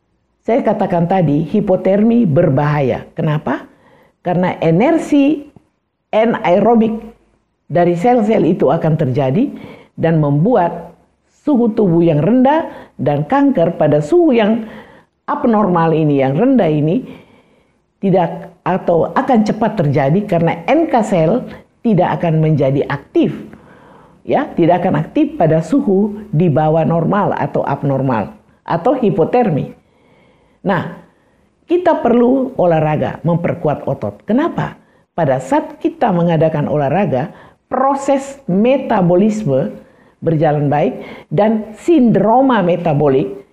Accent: native